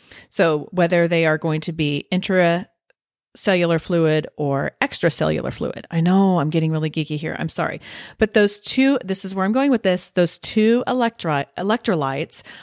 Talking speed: 160 wpm